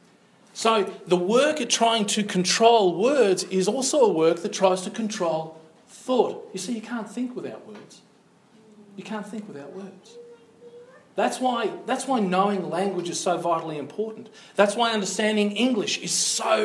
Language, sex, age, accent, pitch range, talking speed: English, male, 40-59, Australian, 175-225 Hz, 160 wpm